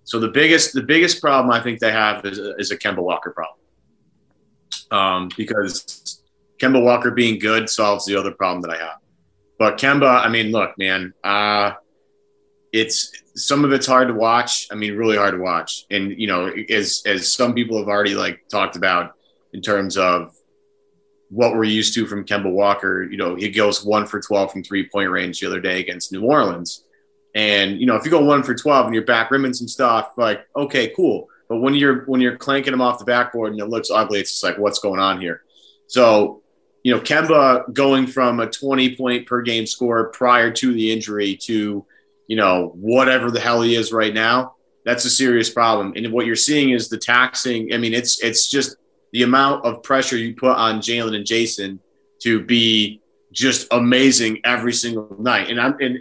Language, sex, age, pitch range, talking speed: English, male, 30-49, 105-130 Hz, 200 wpm